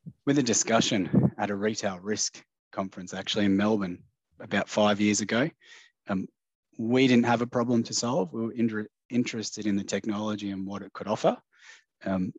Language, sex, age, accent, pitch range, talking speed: English, male, 20-39, Australian, 95-110 Hz, 175 wpm